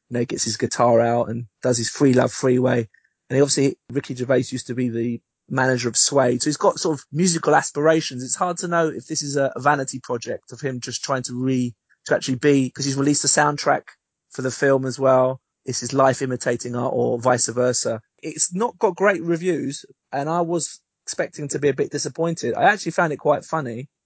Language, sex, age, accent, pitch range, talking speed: English, male, 20-39, British, 125-155 Hz, 220 wpm